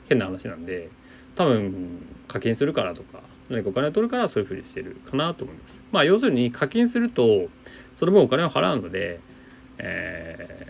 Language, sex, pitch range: Japanese, male, 100-160 Hz